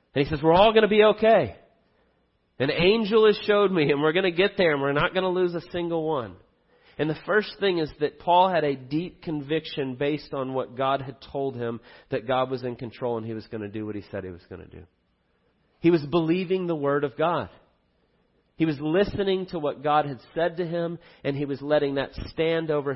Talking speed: 235 wpm